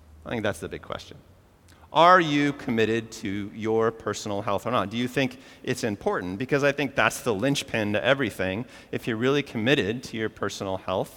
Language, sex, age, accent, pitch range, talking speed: English, male, 30-49, American, 105-145 Hz, 195 wpm